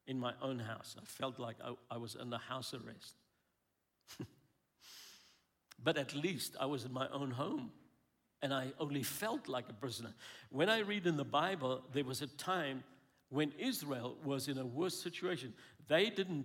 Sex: male